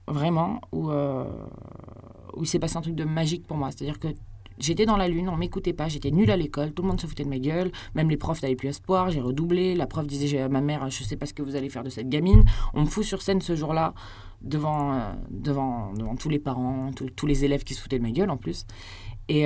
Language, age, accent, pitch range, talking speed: French, 20-39, French, 130-185 Hz, 275 wpm